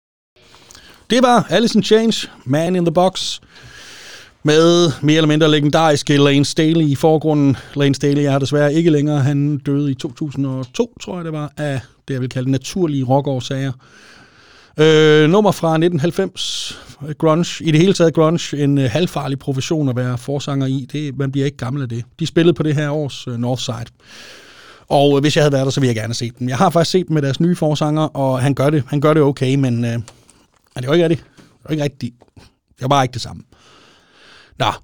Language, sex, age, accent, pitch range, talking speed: Danish, male, 30-49, native, 130-165 Hz, 205 wpm